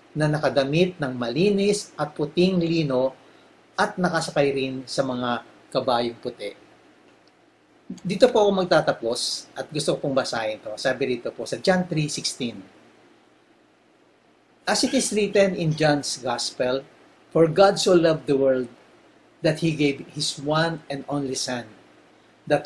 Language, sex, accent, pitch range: English, male, Filipino, 140-190 Hz